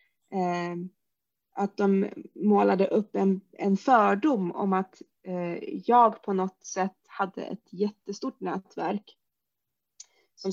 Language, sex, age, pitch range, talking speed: Swedish, female, 30-49, 185-225 Hz, 105 wpm